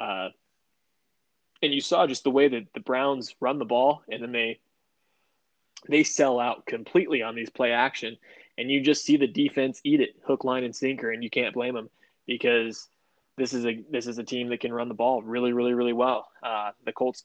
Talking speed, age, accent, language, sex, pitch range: 210 wpm, 20-39, American, English, male, 120-140 Hz